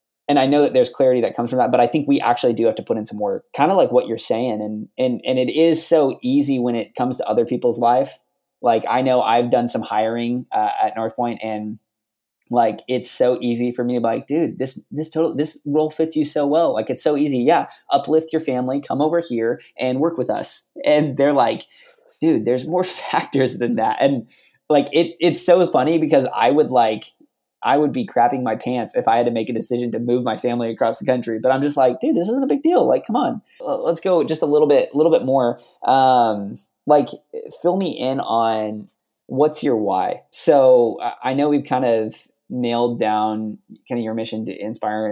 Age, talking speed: 20-39, 230 wpm